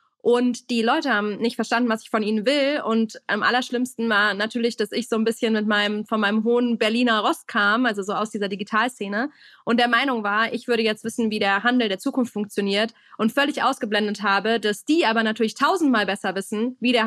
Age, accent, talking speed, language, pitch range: 20-39, German, 215 wpm, German, 210-245 Hz